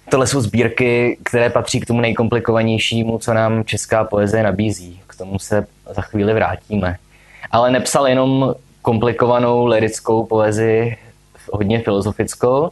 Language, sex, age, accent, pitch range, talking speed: Czech, male, 20-39, native, 95-115 Hz, 125 wpm